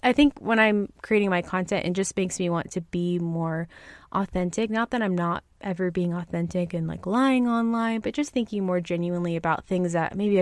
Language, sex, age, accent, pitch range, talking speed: English, female, 20-39, American, 175-210 Hz, 205 wpm